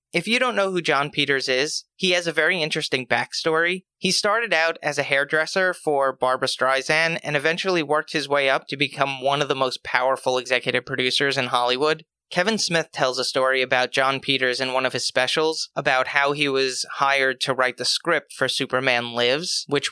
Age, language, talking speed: 30-49, English, 200 wpm